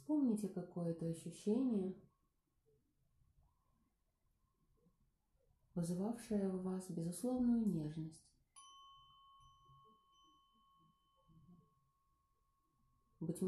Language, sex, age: Russian, female, 30-49